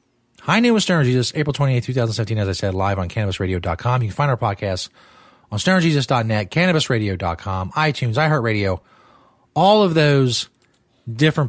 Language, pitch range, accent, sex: English, 105-160 Hz, American, male